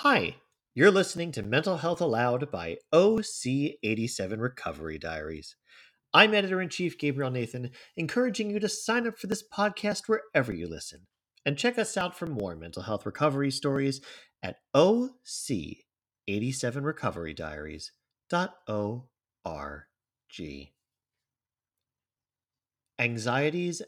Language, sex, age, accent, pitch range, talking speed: English, male, 40-59, American, 100-145 Hz, 100 wpm